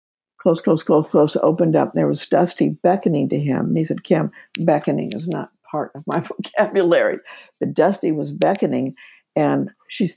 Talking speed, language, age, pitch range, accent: 170 wpm, English, 60-79, 155-205 Hz, American